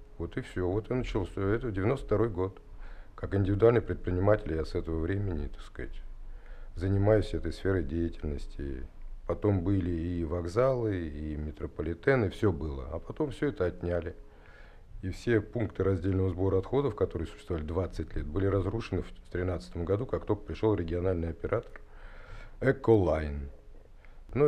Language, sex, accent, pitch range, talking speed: Russian, male, native, 85-110 Hz, 140 wpm